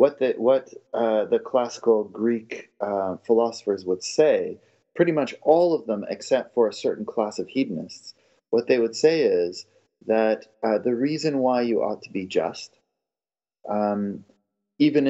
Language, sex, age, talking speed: English, male, 30-49, 150 wpm